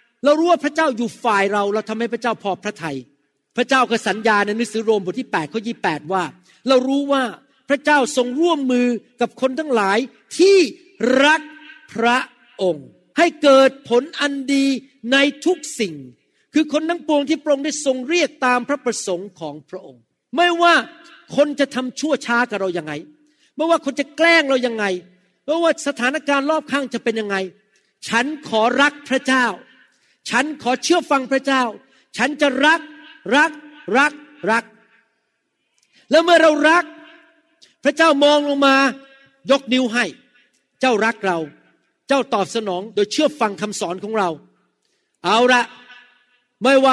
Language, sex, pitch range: Thai, male, 225-295 Hz